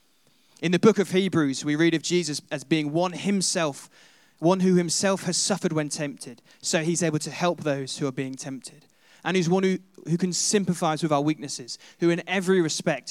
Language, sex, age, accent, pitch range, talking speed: English, male, 20-39, British, 140-180 Hz, 200 wpm